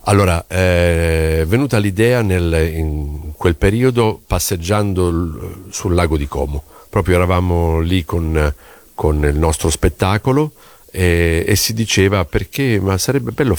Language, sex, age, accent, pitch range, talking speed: Italian, male, 50-69, native, 80-100 Hz, 135 wpm